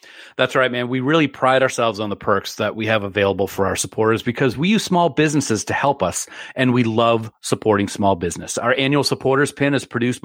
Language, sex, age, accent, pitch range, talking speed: English, male, 40-59, American, 110-160 Hz, 215 wpm